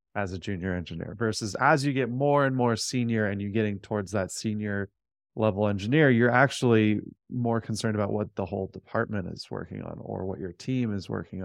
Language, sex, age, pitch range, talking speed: English, male, 20-39, 100-115 Hz, 200 wpm